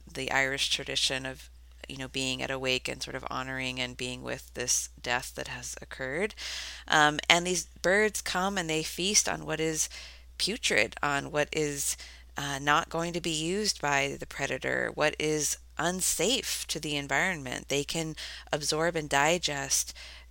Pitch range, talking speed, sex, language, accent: 130-160 Hz, 170 wpm, female, English, American